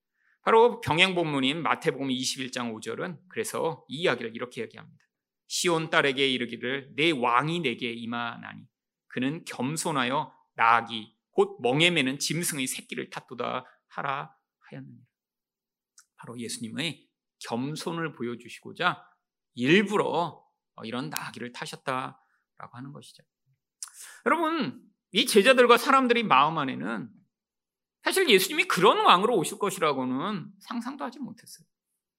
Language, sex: Korean, male